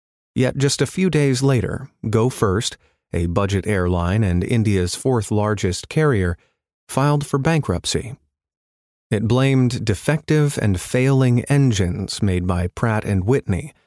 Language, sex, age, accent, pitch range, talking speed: English, male, 30-49, American, 95-130 Hz, 120 wpm